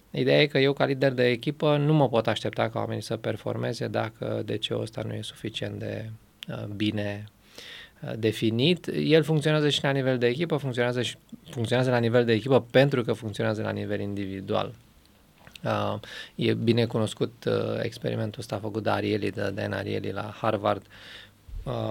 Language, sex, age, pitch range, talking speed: English, male, 20-39, 110-130 Hz, 155 wpm